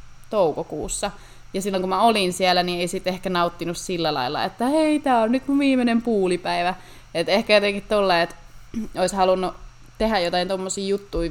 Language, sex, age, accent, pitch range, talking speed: Finnish, female, 20-39, native, 170-205 Hz, 175 wpm